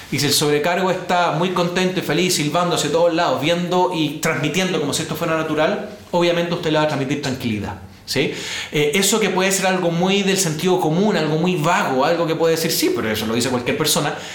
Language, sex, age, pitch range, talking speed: Spanish, male, 30-49, 140-175 Hz, 220 wpm